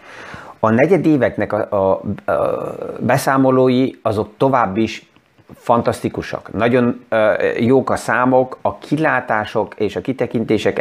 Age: 30-49